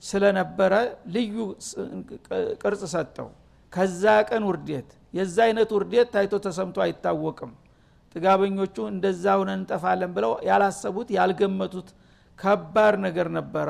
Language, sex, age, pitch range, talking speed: Amharic, male, 60-79, 190-215 Hz, 105 wpm